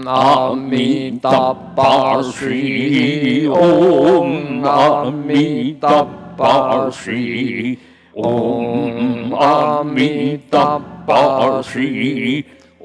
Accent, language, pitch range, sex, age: Indian, Chinese, 130-145 Hz, male, 60-79